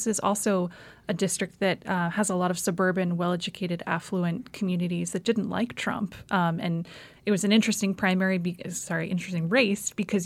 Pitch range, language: 175-205 Hz, English